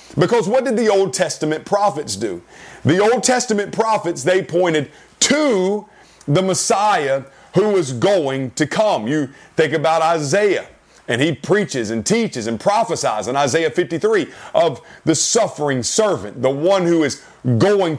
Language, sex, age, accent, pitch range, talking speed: English, male, 40-59, American, 145-190 Hz, 150 wpm